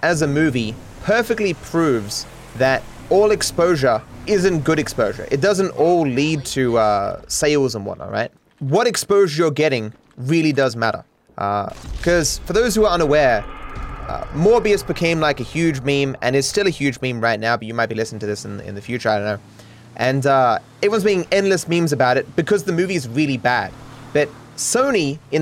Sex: male